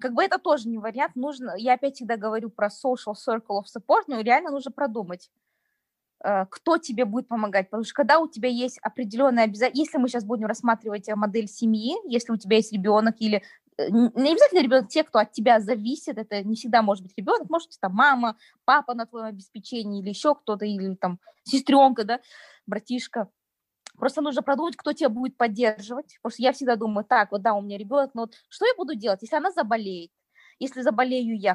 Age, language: 20-39, Russian